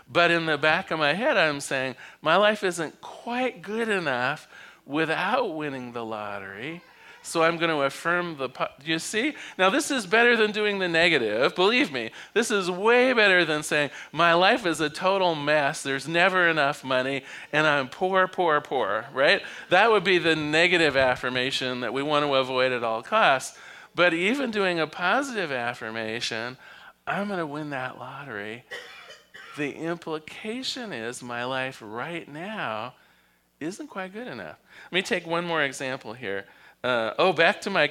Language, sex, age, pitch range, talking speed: English, male, 40-59, 130-185 Hz, 170 wpm